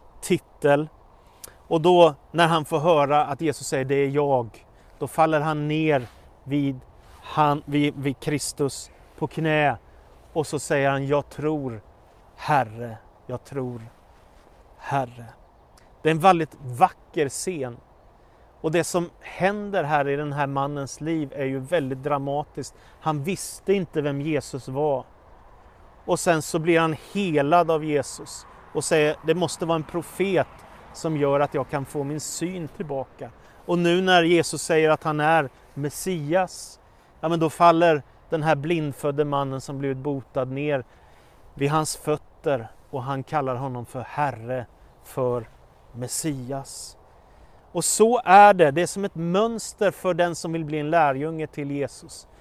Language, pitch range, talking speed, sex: Swedish, 135-165 Hz, 155 wpm, male